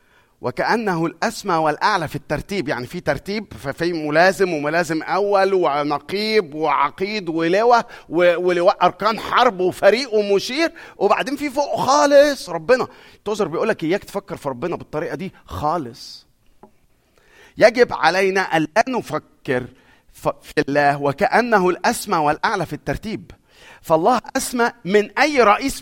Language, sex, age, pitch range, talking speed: Arabic, male, 50-69, 155-225 Hz, 120 wpm